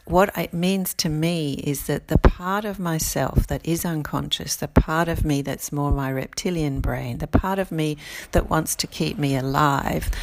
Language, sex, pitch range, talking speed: English, female, 135-165 Hz, 195 wpm